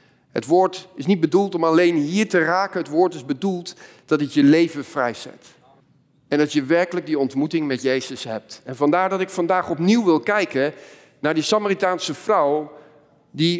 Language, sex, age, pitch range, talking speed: Dutch, male, 50-69, 150-200 Hz, 180 wpm